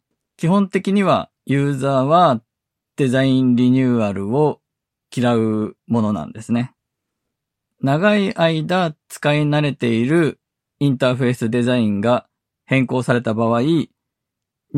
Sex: male